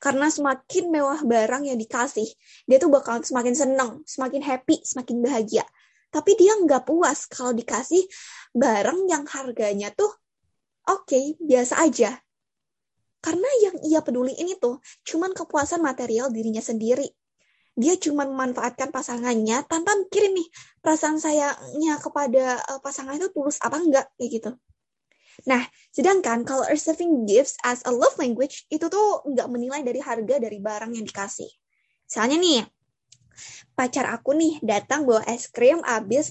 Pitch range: 240-315 Hz